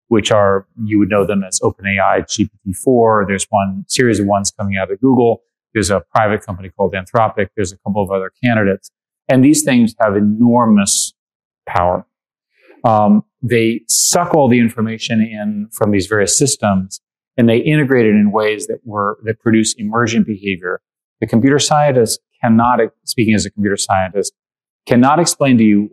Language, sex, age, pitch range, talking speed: English, male, 30-49, 100-120 Hz, 170 wpm